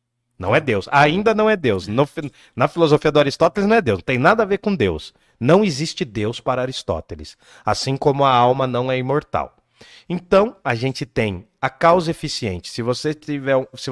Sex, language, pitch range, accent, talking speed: male, Portuguese, 115-160 Hz, Brazilian, 175 wpm